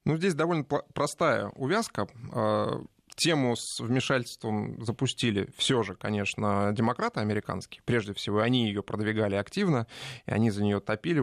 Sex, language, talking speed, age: male, Russian, 135 wpm, 20-39